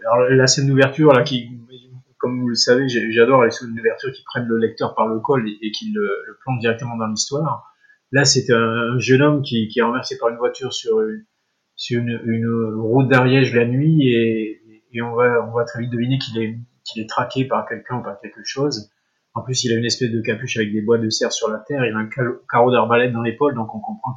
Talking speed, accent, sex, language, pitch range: 245 wpm, French, male, French, 115-130 Hz